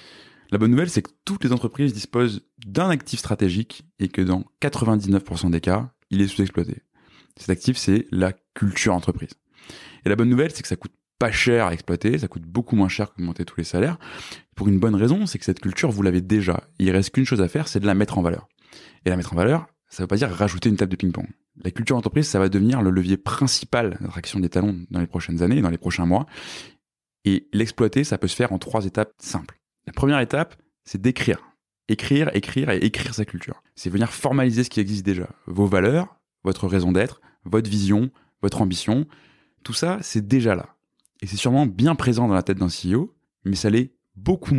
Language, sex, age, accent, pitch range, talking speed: French, male, 20-39, French, 95-125 Hz, 220 wpm